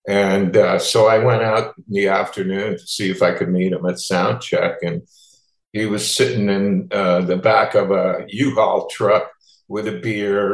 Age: 50-69